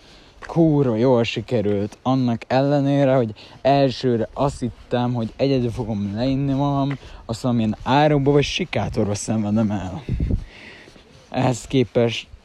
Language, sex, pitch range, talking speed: Hungarian, male, 105-125 Hz, 110 wpm